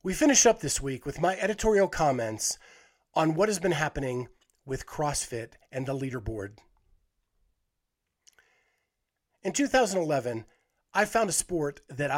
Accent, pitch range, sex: American, 135-185 Hz, male